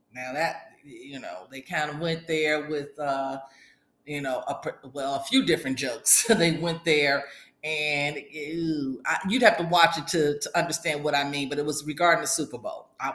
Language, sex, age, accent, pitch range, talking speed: English, female, 40-59, American, 155-220 Hz, 185 wpm